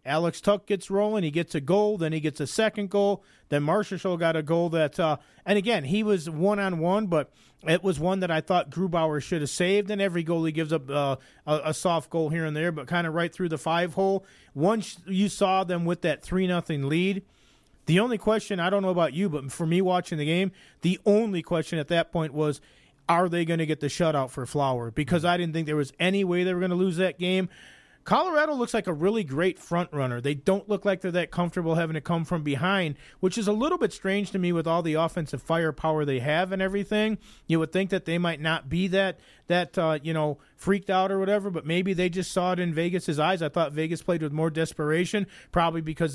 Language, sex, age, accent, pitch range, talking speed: English, male, 40-59, American, 160-195 Hz, 240 wpm